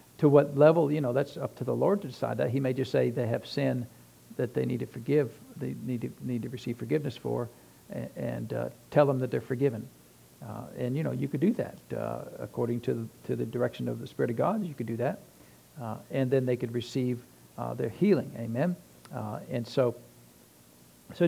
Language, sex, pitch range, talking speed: English, male, 120-140 Hz, 225 wpm